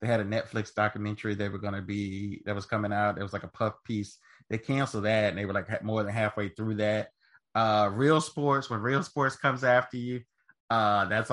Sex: male